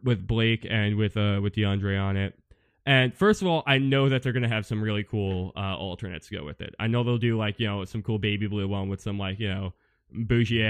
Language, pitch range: English, 95-115 Hz